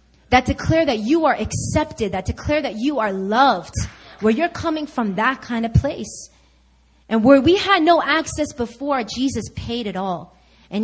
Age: 30-49